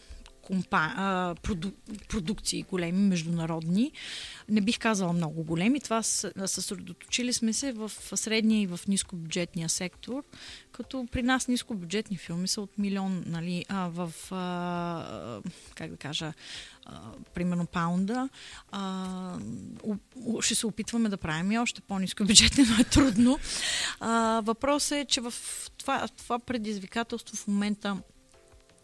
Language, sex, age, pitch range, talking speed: Bulgarian, female, 30-49, 180-225 Hz, 130 wpm